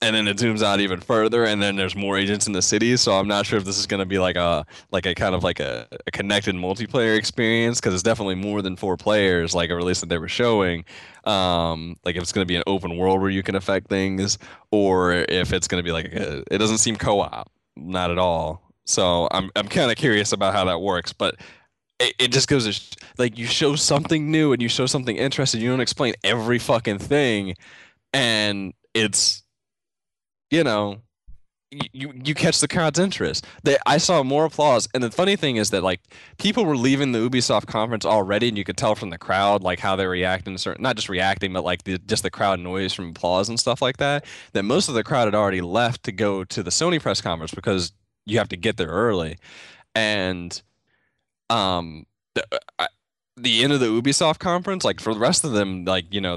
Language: English